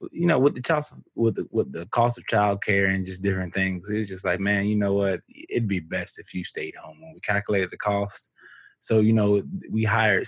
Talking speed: 240 wpm